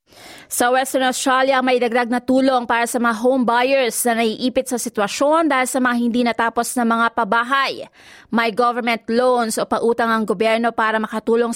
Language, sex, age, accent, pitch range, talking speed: Filipino, female, 20-39, native, 220-250 Hz, 170 wpm